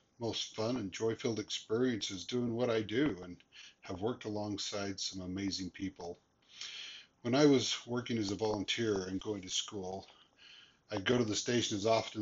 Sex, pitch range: male, 100-115 Hz